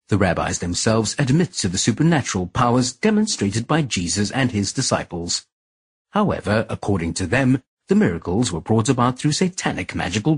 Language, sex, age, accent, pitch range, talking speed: English, male, 40-59, British, 100-160 Hz, 150 wpm